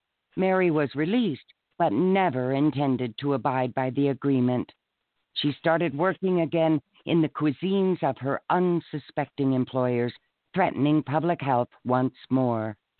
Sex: female